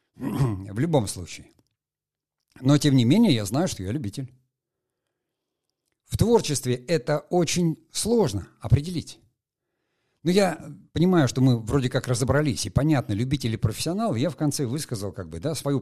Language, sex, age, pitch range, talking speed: Russian, male, 50-69, 105-155 Hz, 150 wpm